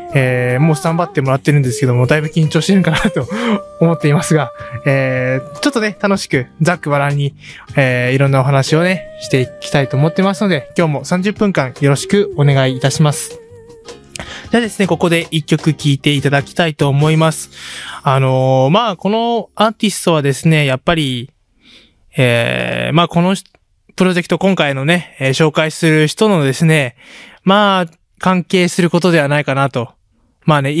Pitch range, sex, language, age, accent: 140-190 Hz, male, Japanese, 20-39, native